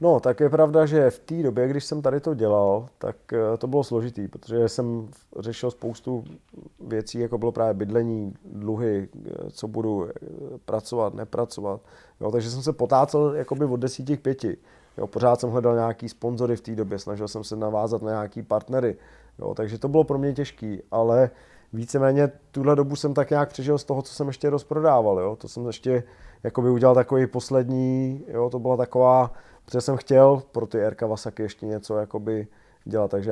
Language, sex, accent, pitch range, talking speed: Czech, male, native, 115-135 Hz, 175 wpm